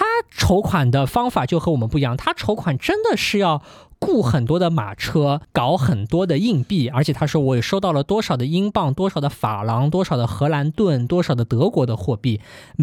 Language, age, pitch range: Chinese, 20-39, 125-185 Hz